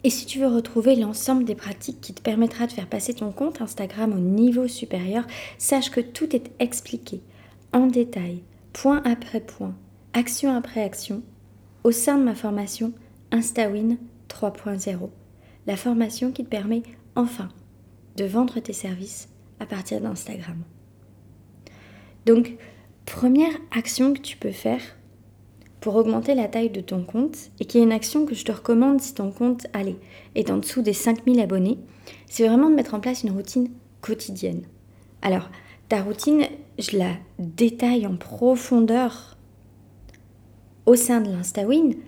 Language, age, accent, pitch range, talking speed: French, 30-49, French, 170-245 Hz, 155 wpm